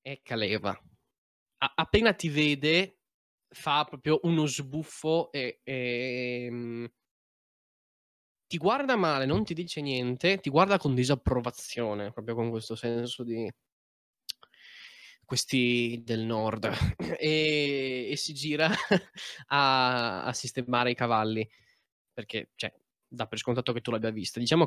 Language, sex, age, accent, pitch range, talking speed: Italian, male, 10-29, native, 115-155 Hz, 120 wpm